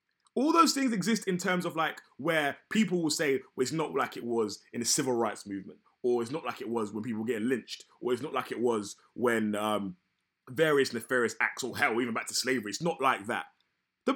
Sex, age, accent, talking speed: male, 20-39, British, 235 wpm